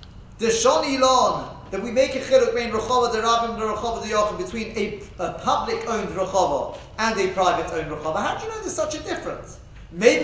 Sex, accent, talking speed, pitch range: male, British, 205 wpm, 190-270 Hz